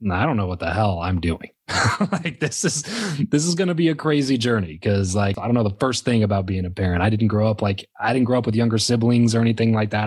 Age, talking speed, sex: 20-39, 275 wpm, male